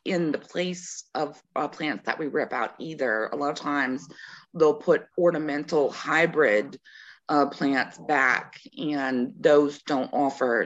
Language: English